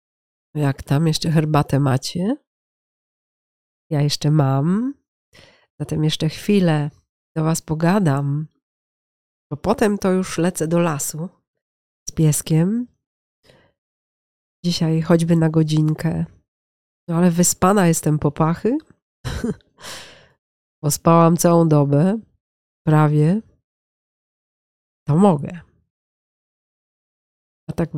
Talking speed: 90 wpm